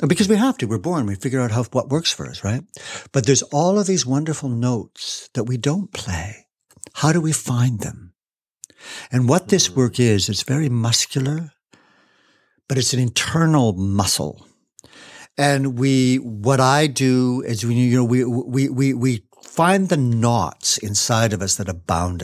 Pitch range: 110-140 Hz